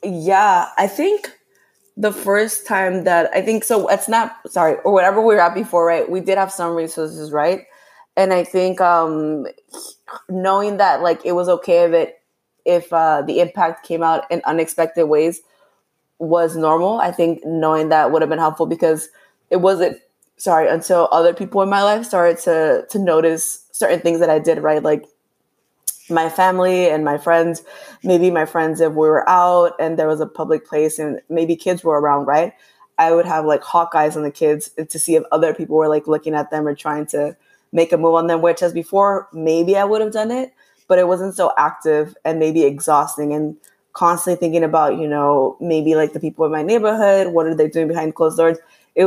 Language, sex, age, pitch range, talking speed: English, female, 20-39, 155-195 Hz, 205 wpm